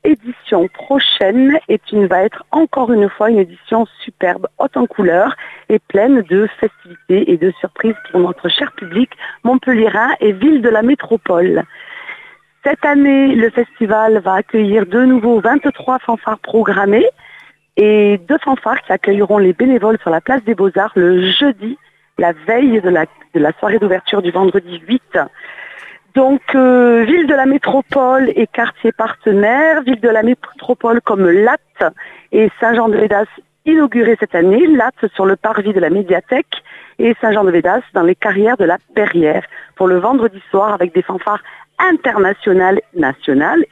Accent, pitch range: French, 195-255 Hz